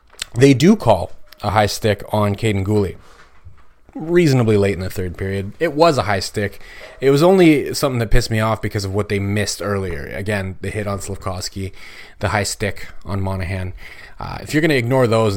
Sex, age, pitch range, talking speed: male, 30-49, 100-120 Hz, 200 wpm